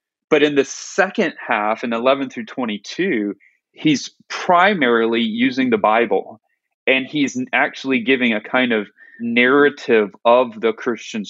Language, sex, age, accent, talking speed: English, male, 30-49, American, 135 wpm